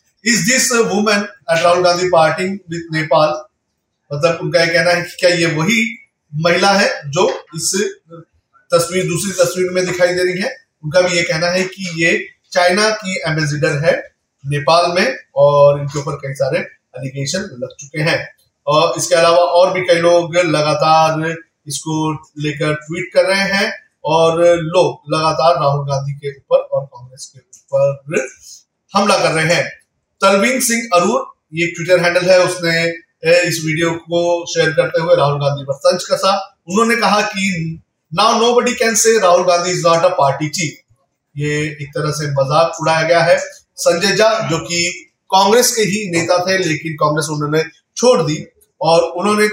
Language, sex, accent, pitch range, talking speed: Hindi, male, native, 155-185 Hz, 160 wpm